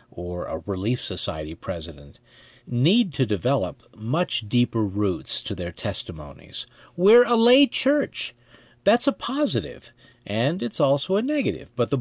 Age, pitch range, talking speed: 50-69, 105-140 Hz, 140 wpm